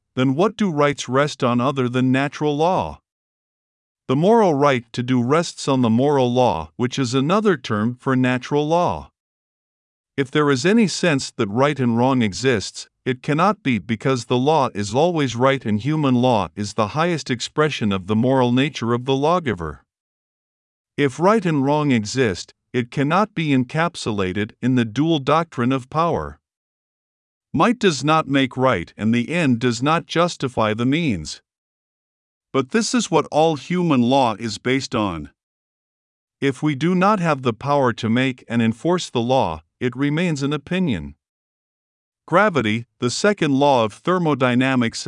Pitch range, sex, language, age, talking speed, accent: 120-155 Hz, male, English, 50-69, 160 wpm, American